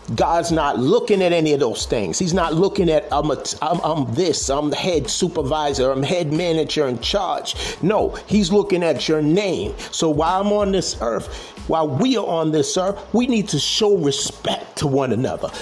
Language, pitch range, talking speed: English, 150-185 Hz, 200 wpm